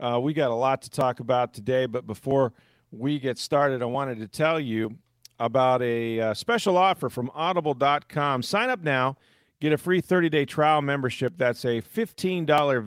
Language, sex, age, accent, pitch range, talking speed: English, male, 40-59, American, 125-160 Hz, 180 wpm